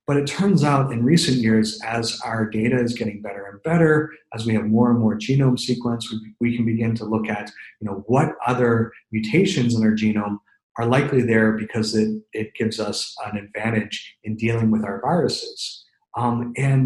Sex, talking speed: male, 190 wpm